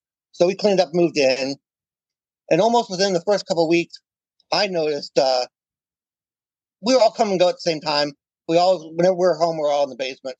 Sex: male